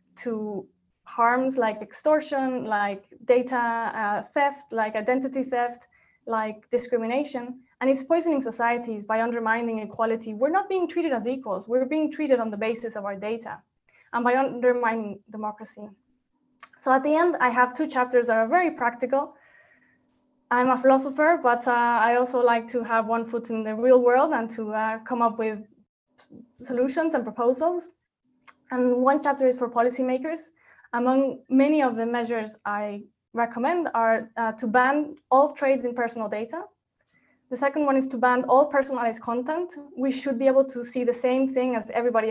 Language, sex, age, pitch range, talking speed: English, female, 20-39, 225-265 Hz, 165 wpm